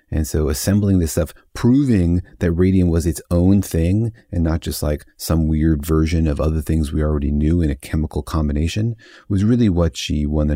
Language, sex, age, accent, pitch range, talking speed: English, male, 30-49, American, 80-105 Hz, 200 wpm